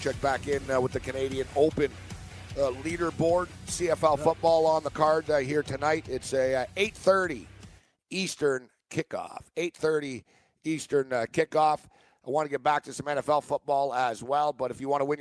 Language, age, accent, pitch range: English, 50-69, American, 135-160 Hz